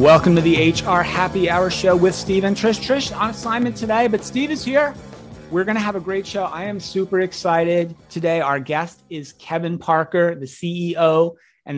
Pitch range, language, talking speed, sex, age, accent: 140-175 Hz, English, 200 wpm, male, 30-49, American